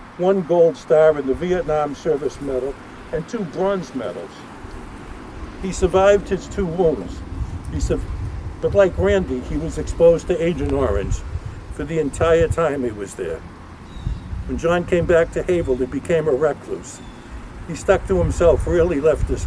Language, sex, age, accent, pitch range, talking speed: English, male, 60-79, American, 125-175 Hz, 160 wpm